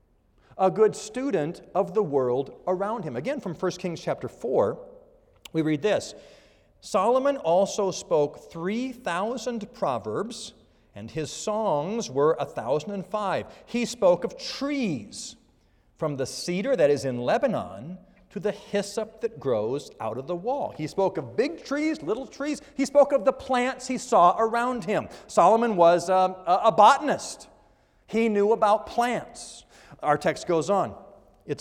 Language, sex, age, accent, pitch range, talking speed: English, male, 40-59, American, 175-260 Hz, 150 wpm